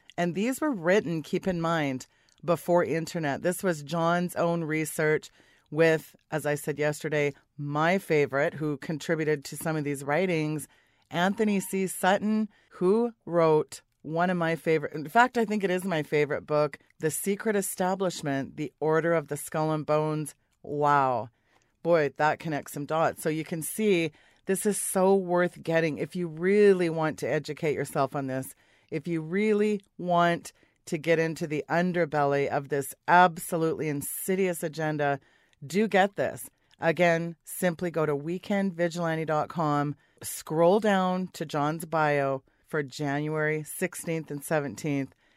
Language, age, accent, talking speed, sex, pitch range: English, 30-49, American, 150 wpm, female, 150-180 Hz